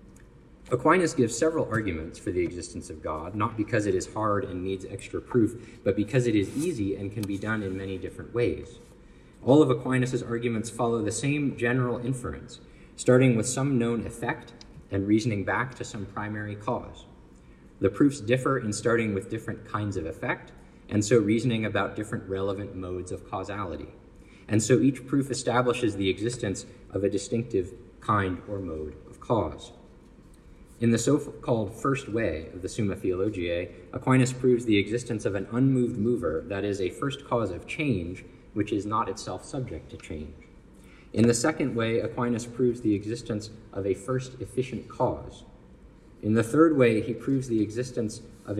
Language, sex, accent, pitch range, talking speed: English, male, American, 100-125 Hz, 170 wpm